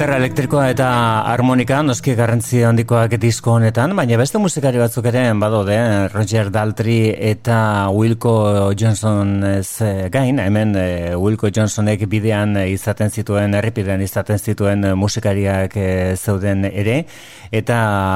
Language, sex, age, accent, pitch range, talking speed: Spanish, male, 30-49, Spanish, 100-115 Hz, 115 wpm